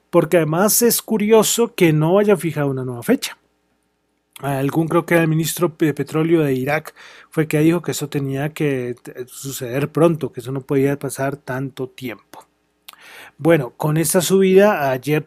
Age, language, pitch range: 30-49, Spanish, 135-170 Hz